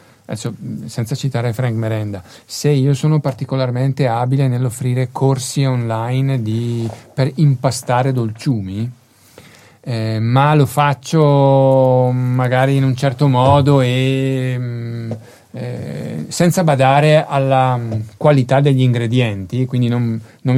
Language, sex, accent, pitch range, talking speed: Italian, male, native, 115-135 Hz, 110 wpm